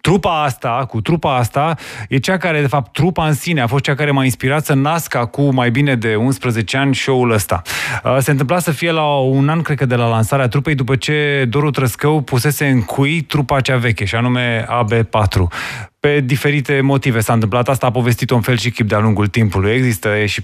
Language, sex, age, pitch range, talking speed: Romanian, male, 20-39, 125-160 Hz, 210 wpm